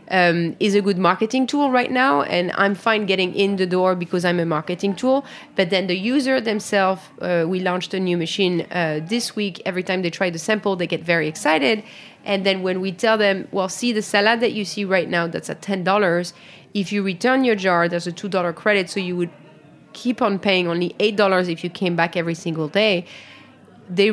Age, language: 30-49, English